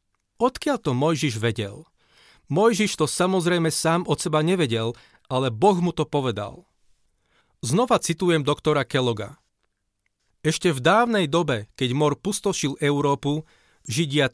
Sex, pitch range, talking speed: male, 130-175 Hz, 120 wpm